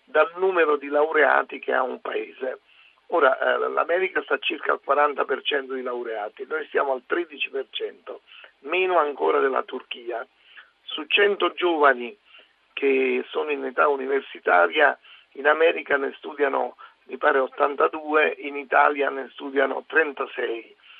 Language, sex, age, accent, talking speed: Italian, male, 50-69, native, 130 wpm